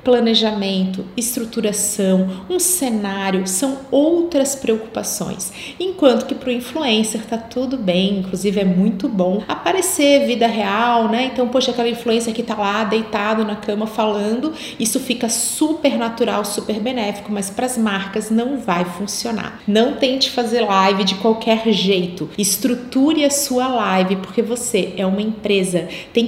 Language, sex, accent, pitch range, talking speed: Portuguese, female, Brazilian, 210-255 Hz, 145 wpm